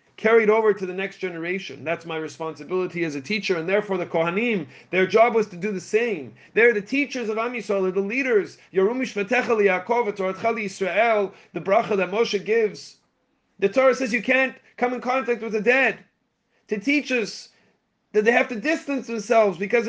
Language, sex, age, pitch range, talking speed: English, male, 30-49, 160-225 Hz, 175 wpm